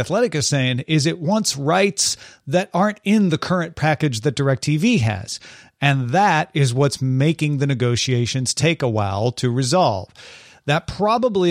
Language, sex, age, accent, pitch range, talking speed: English, male, 40-59, American, 125-170 Hz, 155 wpm